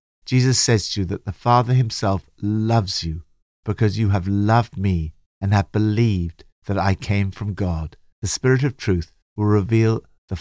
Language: English